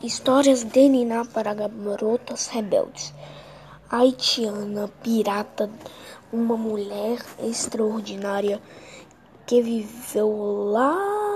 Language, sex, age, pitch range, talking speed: Portuguese, female, 10-29, 210-245 Hz, 75 wpm